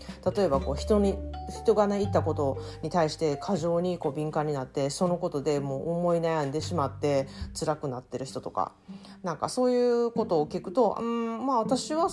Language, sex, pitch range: Japanese, female, 145-200 Hz